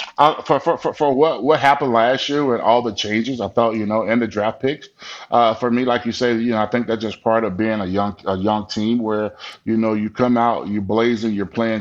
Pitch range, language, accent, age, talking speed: 105-120 Hz, English, American, 30-49, 265 wpm